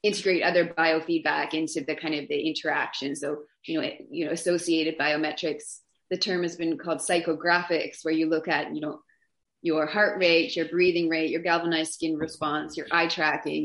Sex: female